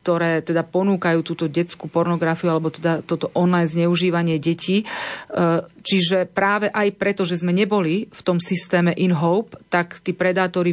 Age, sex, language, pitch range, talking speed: 30-49, female, Slovak, 170-185 Hz, 145 wpm